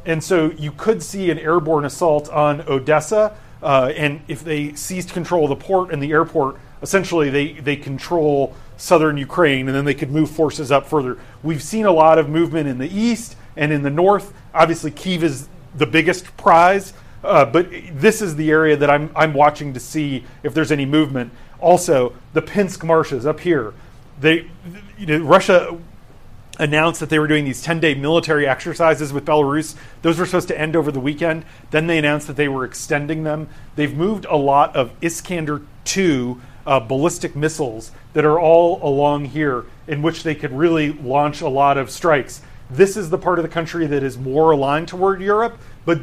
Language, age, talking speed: English, 30-49, 190 wpm